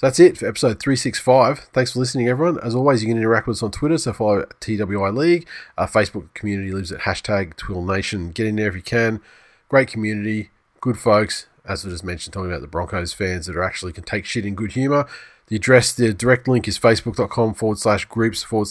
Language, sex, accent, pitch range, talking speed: English, male, Australian, 100-120 Hz, 225 wpm